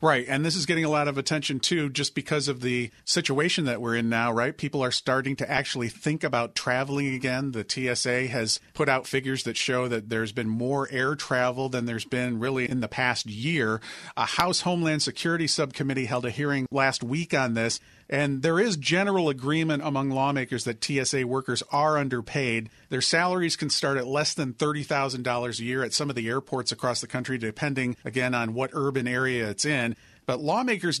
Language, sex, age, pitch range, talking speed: English, male, 40-59, 125-150 Hz, 200 wpm